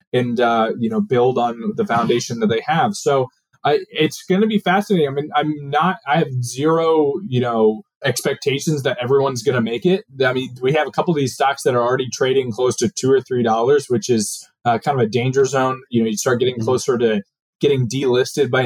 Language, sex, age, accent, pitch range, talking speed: English, male, 20-39, American, 125-160 Hz, 225 wpm